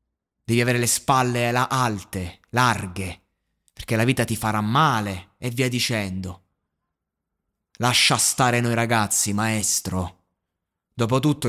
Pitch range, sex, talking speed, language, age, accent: 100-125 Hz, male, 110 wpm, Italian, 20-39, native